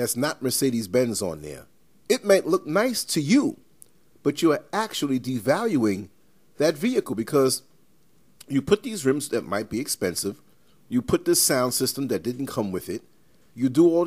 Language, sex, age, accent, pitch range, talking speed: English, male, 40-59, American, 110-150 Hz, 170 wpm